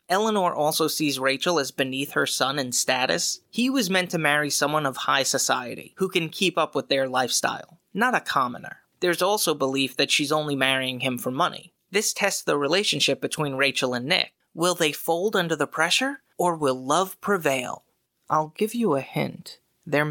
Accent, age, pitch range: American, 30-49, 140-185 Hz